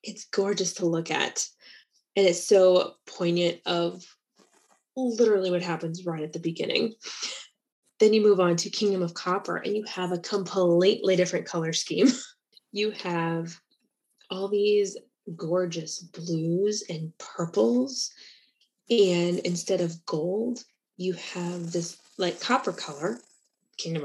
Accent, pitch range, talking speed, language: American, 170-205 Hz, 130 wpm, English